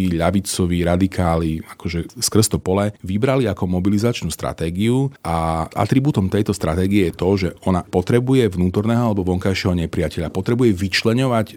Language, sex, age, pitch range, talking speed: Slovak, male, 40-59, 85-110 Hz, 125 wpm